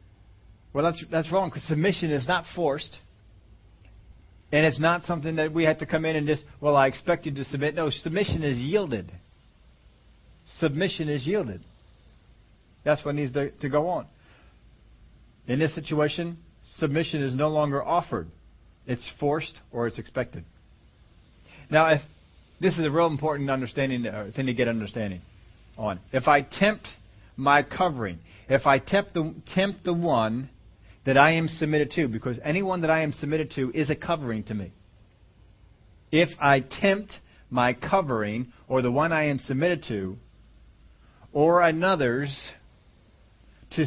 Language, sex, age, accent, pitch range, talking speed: English, male, 40-59, American, 105-160 Hz, 155 wpm